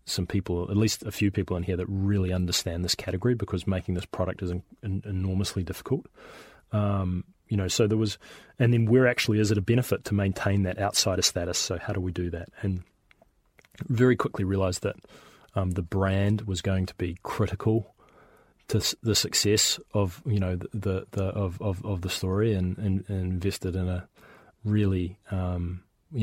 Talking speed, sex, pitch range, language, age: 190 wpm, male, 95-105 Hz, English, 20-39